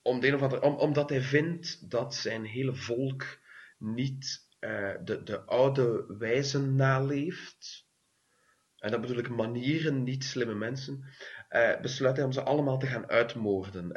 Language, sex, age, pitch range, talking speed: English, male, 30-49, 100-130 Hz, 145 wpm